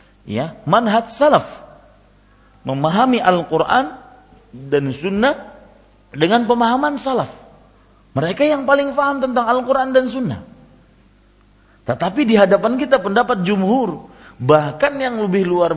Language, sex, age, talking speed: Malay, male, 40-59, 105 wpm